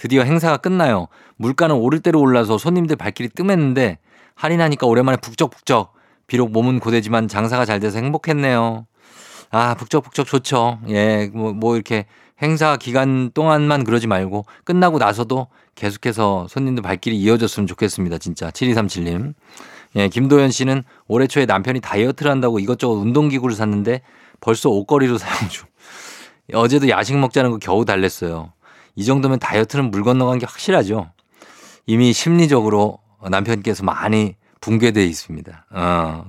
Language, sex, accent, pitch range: Korean, male, native, 105-140 Hz